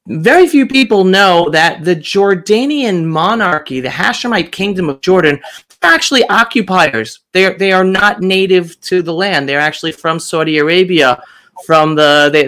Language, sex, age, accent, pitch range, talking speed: English, male, 30-49, American, 150-190 Hz, 145 wpm